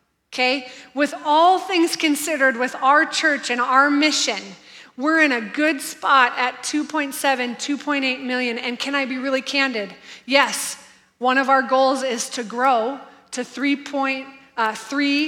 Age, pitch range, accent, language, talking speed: 20-39, 235-270 Hz, American, English, 140 wpm